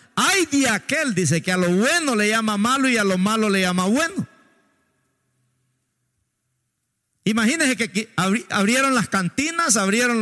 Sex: male